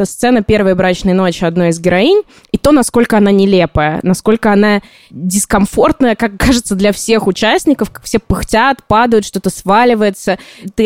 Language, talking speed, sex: Russian, 155 wpm, female